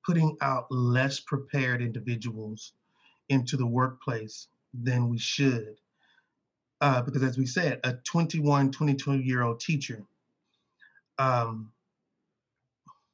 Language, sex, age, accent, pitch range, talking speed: English, male, 30-49, American, 130-155 Hz, 105 wpm